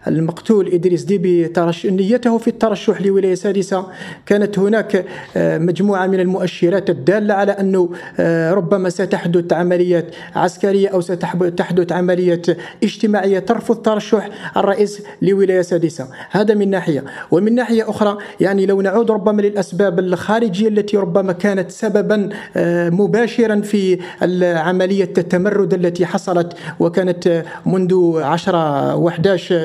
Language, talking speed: Arabic, 115 wpm